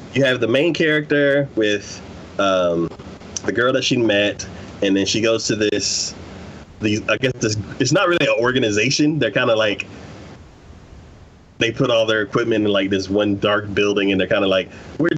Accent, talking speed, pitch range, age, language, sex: American, 190 wpm, 95-135 Hz, 30-49, English, male